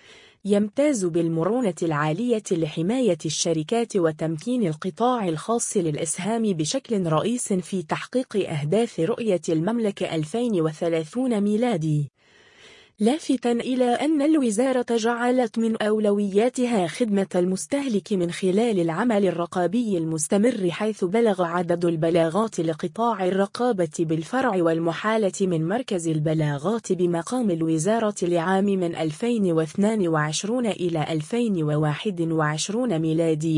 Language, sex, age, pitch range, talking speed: Arabic, female, 20-39, 165-230 Hz, 90 wpm